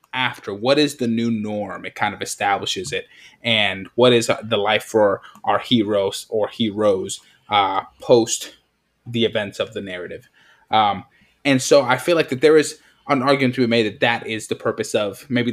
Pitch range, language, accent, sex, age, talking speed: 110-130 Hz, English, American, male, 20-39, 190 wpm